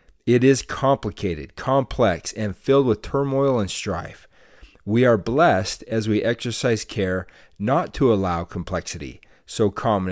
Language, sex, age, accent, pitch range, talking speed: English, male, 40-59, American, 95-125 Hz, 135 wpm